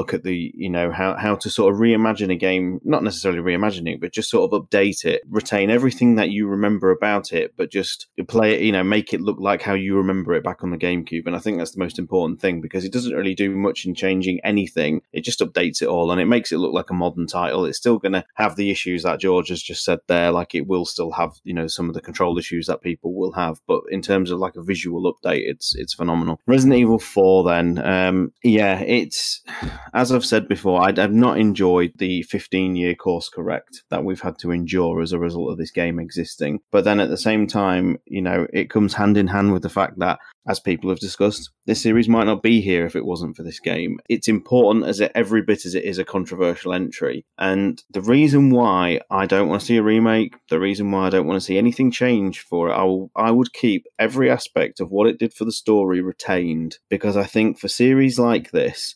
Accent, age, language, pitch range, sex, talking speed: British, 20-39, English, 90-105 Hz, male, 245 wpm